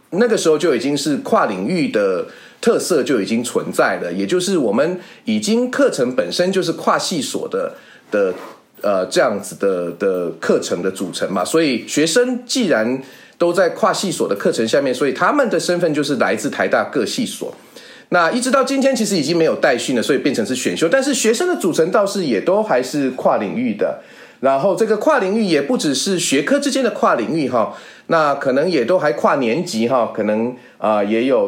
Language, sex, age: Chinese, male, 30-49